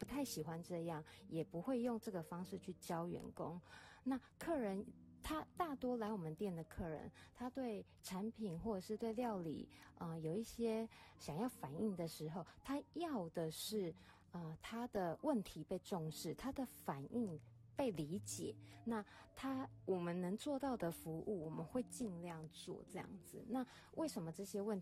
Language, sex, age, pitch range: Chinese, female, 20-39, 160-225 Hz